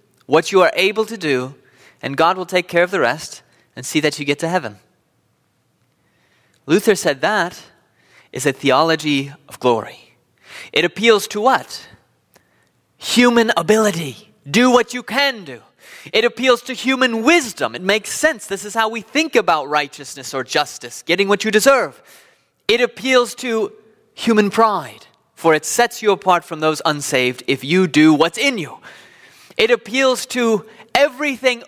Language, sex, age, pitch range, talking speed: English, male, 20-39, 155-240 Hz, 160 wpm